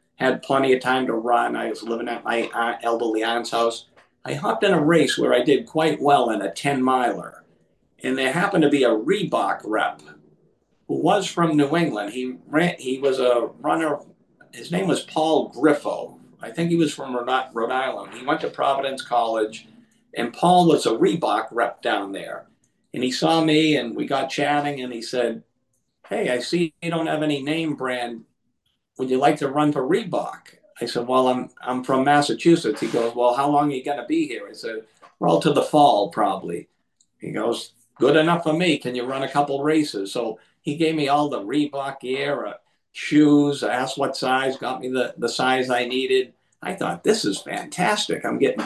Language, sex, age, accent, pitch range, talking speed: English, male, 50-69, American, 125-160 Hz, 200 wpm